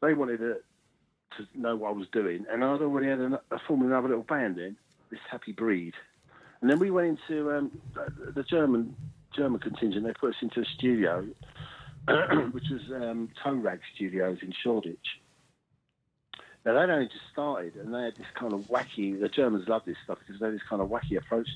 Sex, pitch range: male, 100-130 Hz